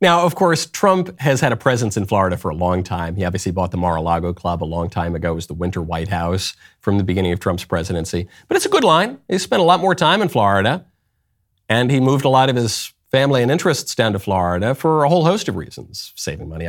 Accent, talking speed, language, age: American, 250 wpm, English, 40-59